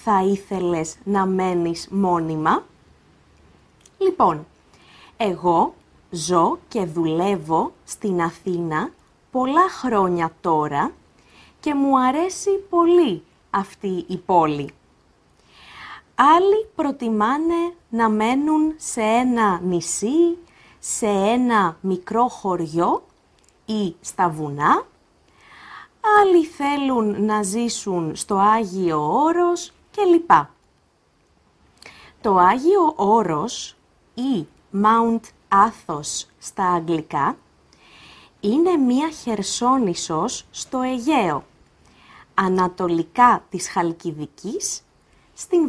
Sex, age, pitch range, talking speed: female, 20-39, 175-280 Hz, 80 wpm